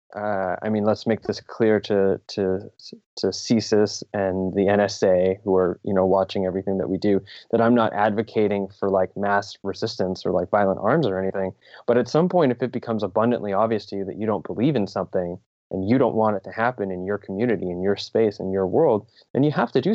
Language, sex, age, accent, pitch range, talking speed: English, male, 20-39, American, 100-115 Hz, 225 wpm